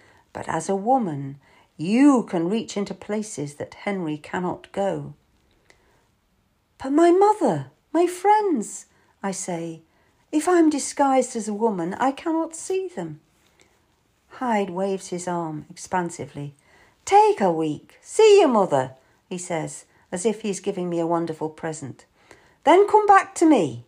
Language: English